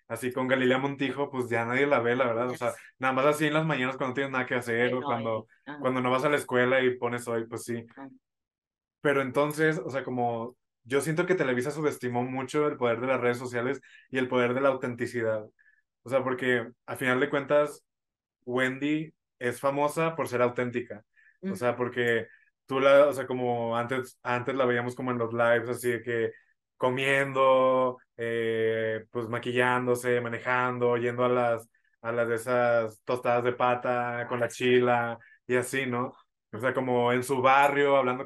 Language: Spanish